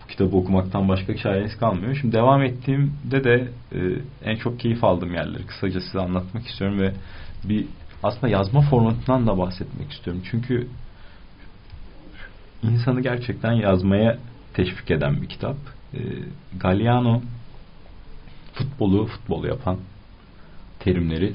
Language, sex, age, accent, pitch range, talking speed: Turkish, male, 40-59, native, 90-120 Hz, 115 wpm